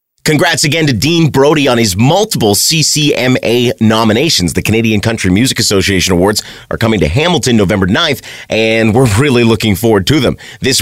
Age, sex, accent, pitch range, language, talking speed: 30-49, male, American, 110-160 Hz, English, 165 wpm